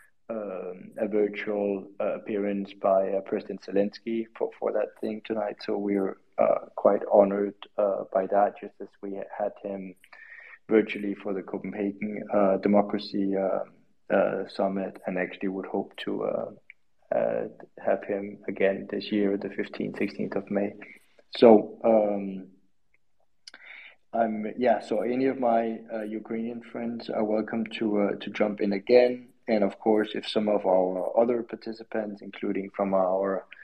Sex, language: male, English